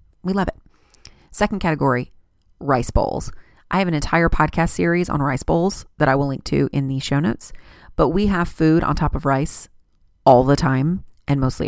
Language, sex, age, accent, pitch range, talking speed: English, female, 30-49, American, 140-180 Hz, 195 wpm